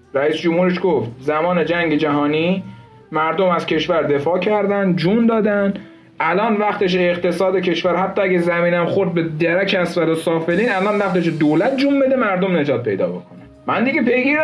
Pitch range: 165-200 Hz